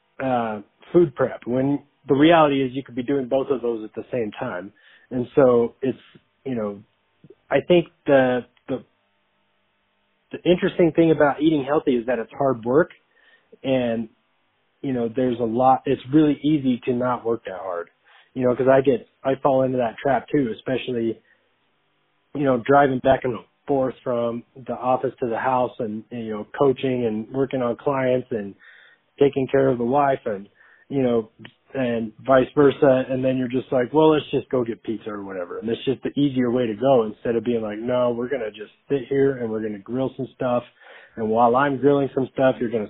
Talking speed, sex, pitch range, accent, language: 200 wpm, male, 115-135 Hz, American, English